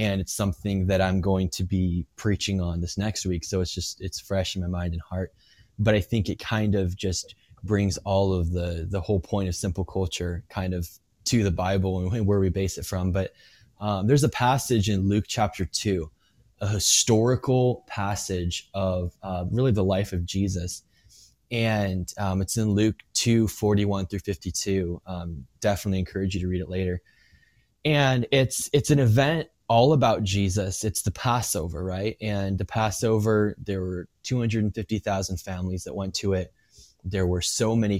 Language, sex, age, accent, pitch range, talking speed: English, male, 20-39, American, 95-110 Hz, 180 wpm